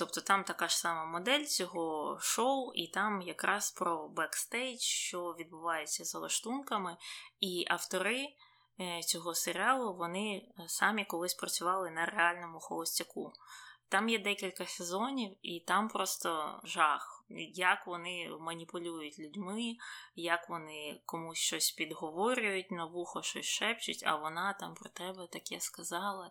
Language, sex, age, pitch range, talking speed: Ukrainian, female, 20-39, 165-200 Hz, 130 wpm